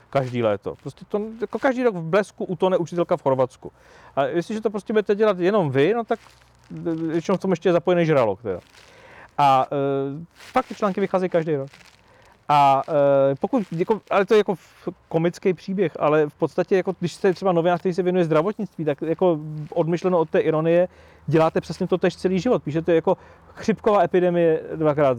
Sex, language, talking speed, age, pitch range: male, Czech, 190 wpm, 40-59, 155-195 Hz